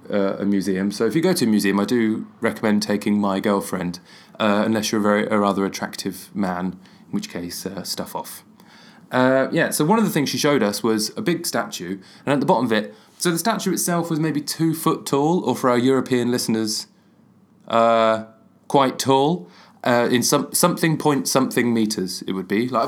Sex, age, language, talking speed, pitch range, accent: male, 20-39, English, 205 wpm, 105-165 Hz, British